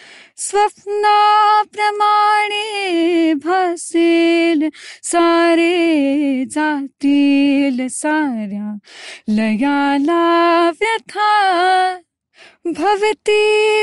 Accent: native